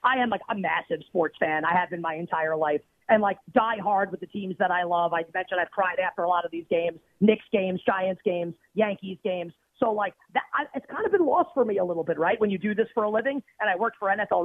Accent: American